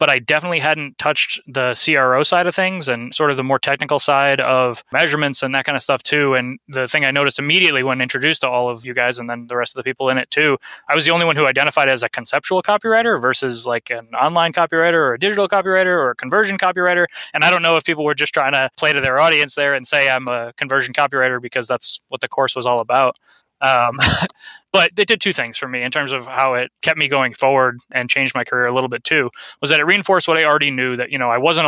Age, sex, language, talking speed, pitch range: 20-39, male, English, 265 wpm, 120-145 Hz